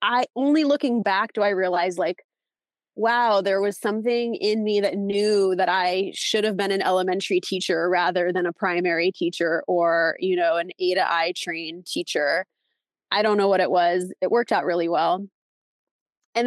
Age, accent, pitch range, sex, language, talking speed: 20-39, American, 180-220 Hz, female, English, 180 wpm